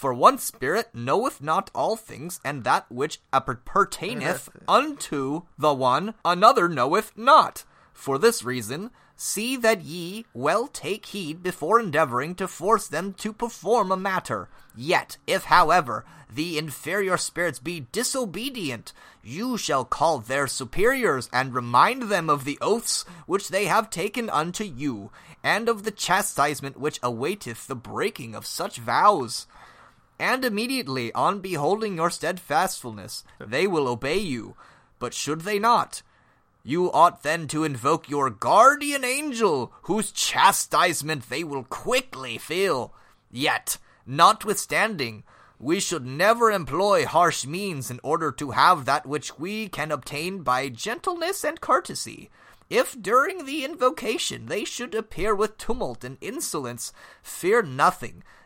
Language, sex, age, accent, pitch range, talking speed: English, male, 30-49, American, 145-220 Hz, 135 wpm